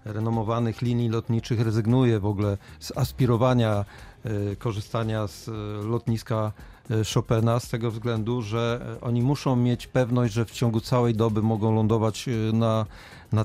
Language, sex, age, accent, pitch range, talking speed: Polish, male, 40-59, native, 110-120 Hz, 130 wpm